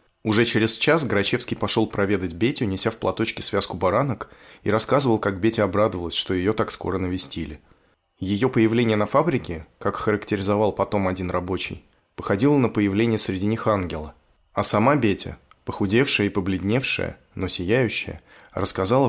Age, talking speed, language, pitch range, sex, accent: 20-39, 145 wpm, Russian, 95-115 Hz, male, native